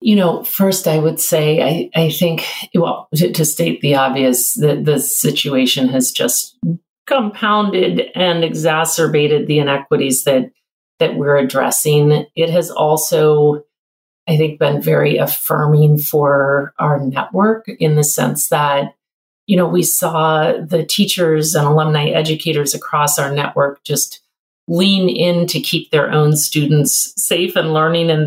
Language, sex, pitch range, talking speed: English, female, 145-170 Hz, 145 wpm